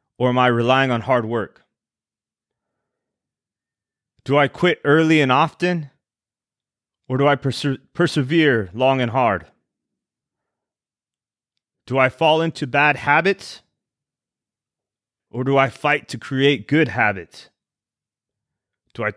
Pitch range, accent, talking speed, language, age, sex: 115-145 Hz, American, 115 wpm, English, 30-49, male